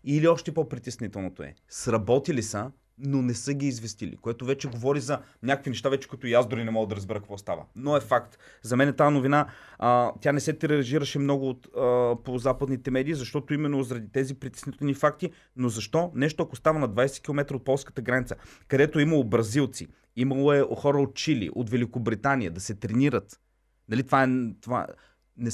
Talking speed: 185 wpm